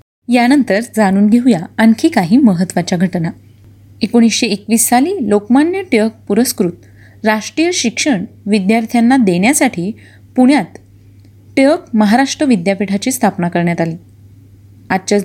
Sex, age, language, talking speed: female, 30-49, Marathi, 100 wpm